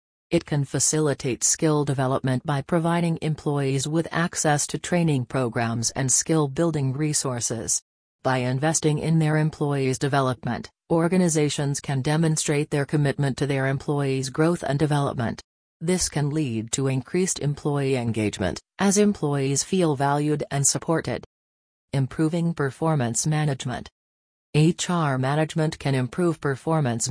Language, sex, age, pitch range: English, female, 40-59, 130-155 Hz